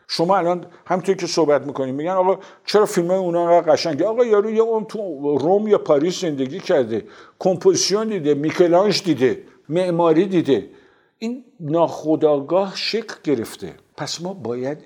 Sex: male